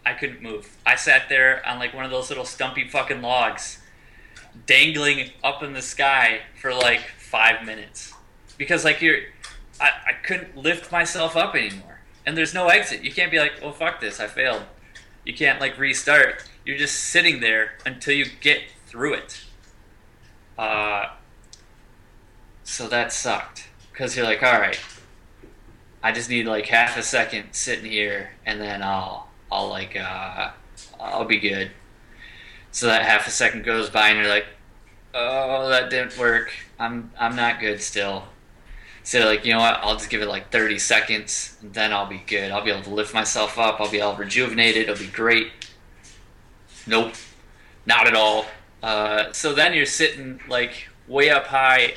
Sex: male